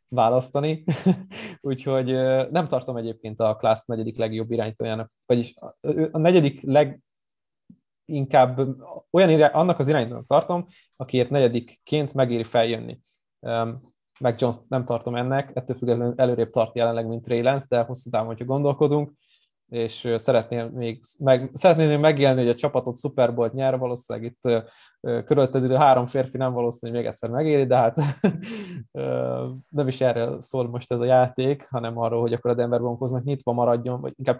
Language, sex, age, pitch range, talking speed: Hungarian, male, 20-39, 115-135 Hz, 150 wpm